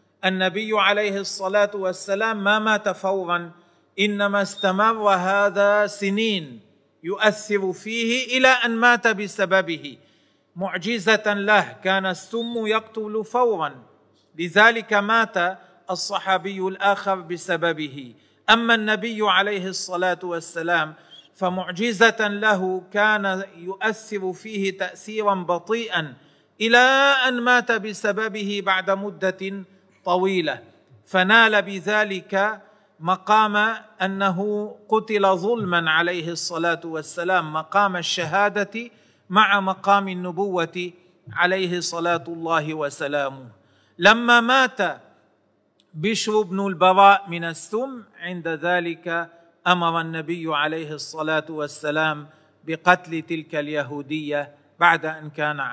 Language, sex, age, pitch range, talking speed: Arabic, male, 40-59, 170-210 Hz, 90 wpm